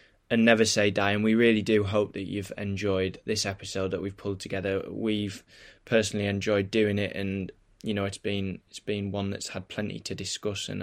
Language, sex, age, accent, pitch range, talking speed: English, male, 20-39, British, 100-110 Hz, 205 wpm